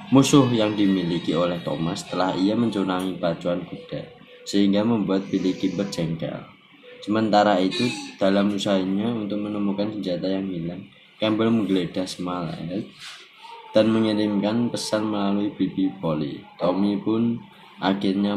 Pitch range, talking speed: 95-115 Hz, 115 wpm